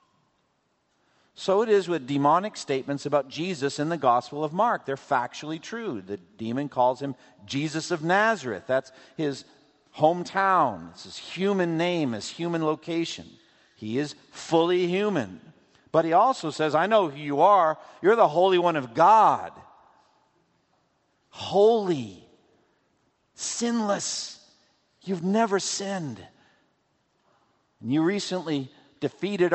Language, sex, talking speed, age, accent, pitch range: English, male, 125 wpm, 50-69, American, 140-185 Hz